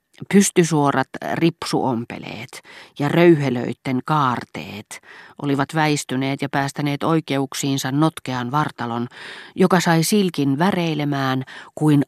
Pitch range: 125-155 Hz